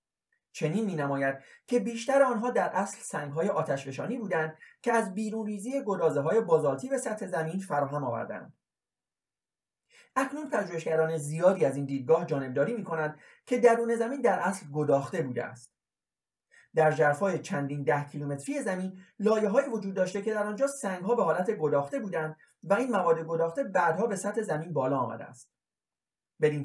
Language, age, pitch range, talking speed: Persian, 30-49, 150-225 Hz, 160 wpm